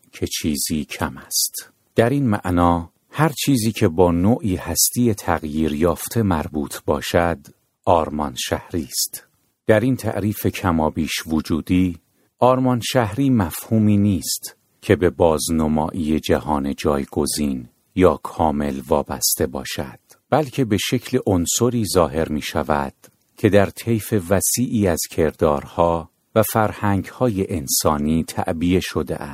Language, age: Persian, 50-69